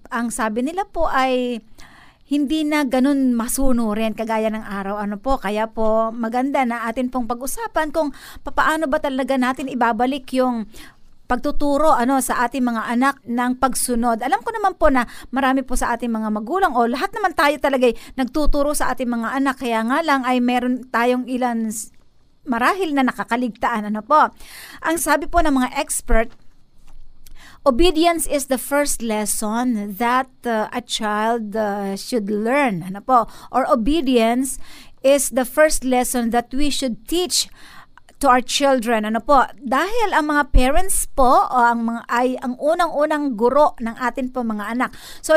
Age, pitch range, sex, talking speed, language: 50-69, 235-290 Hz, female, 160 wpm, Filipino